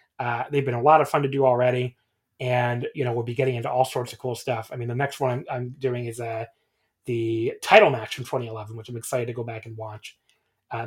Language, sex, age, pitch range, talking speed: English, male, 30-49, 125-155 Hz, 255 wpm